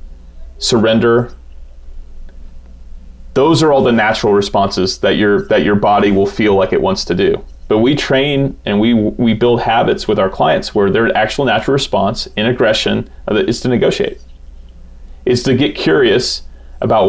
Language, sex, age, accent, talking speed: English, male, 30-49, American, 160 wpm